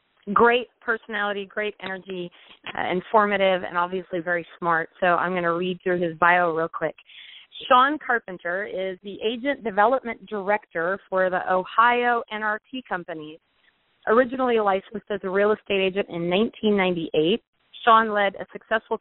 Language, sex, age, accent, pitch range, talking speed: English, female, 30-49, American, 175-220 Hz, 140 wpm